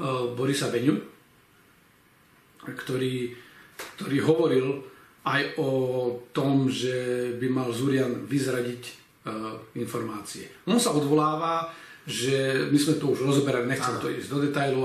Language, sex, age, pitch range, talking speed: Slovak, male, 40-59, 130-155 Hz, 115 wpm